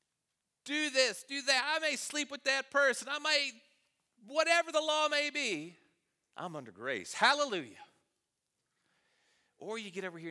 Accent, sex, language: American, male, English